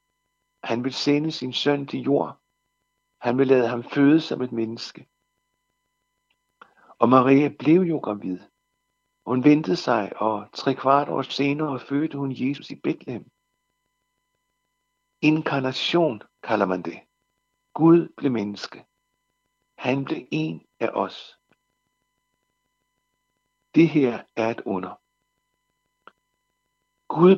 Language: Danish